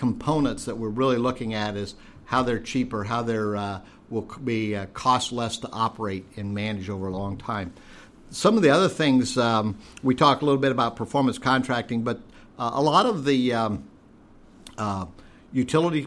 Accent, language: American, English